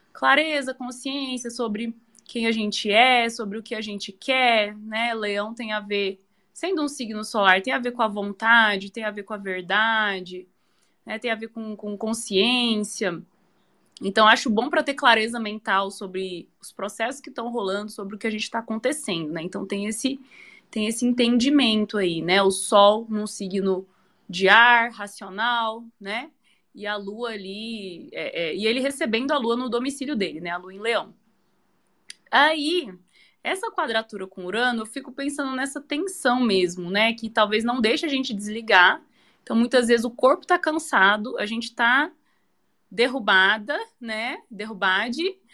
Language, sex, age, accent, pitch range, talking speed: Portuguese, female, 20-39, Brazilian, 205-255 Hz, 165 wpm